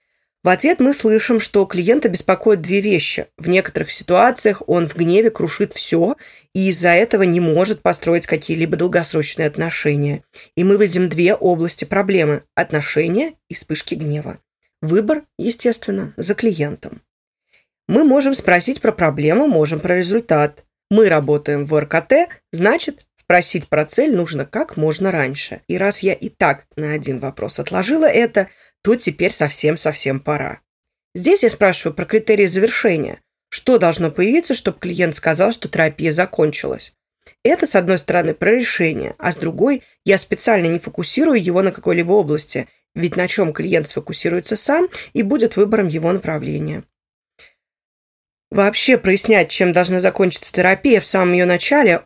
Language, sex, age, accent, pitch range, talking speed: Russian, female, 20-39, native, 160-215 Hz, 145 wpm